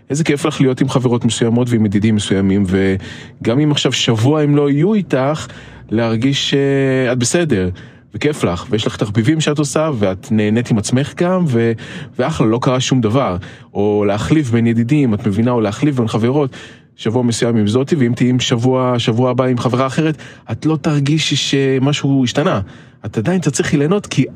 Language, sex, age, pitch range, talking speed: Hebrew, male, 20-39, 105-145 Hz, 175 wpm